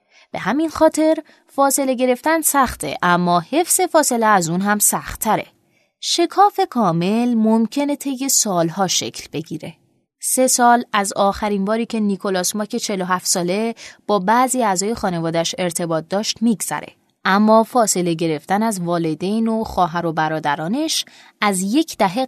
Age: 20-39